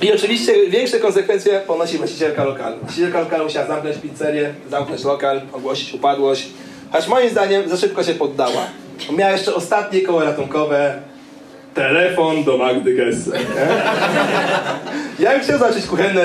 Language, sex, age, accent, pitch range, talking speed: Polish, male, 30-49, native, 150-230 Hz, 135 wpm